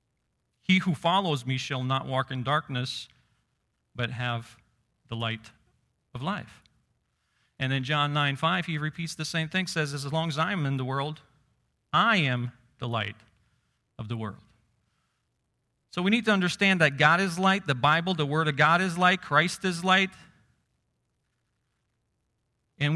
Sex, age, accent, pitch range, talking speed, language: male, 40-59, American, 120-155 Hz, 160 wpm, English